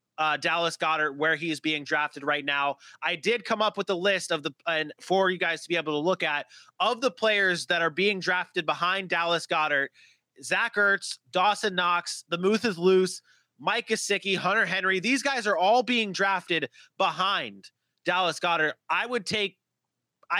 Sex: male